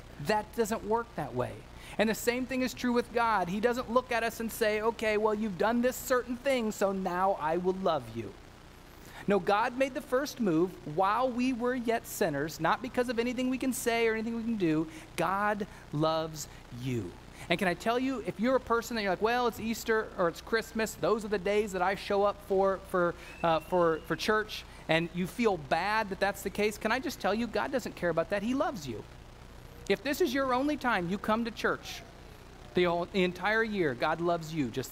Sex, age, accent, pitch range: male, 30-49, American, 165-230 Hz